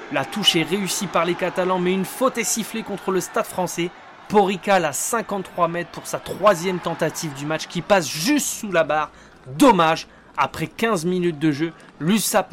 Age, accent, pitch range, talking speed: 20-39, French, 160-195 Hz, 185 wpm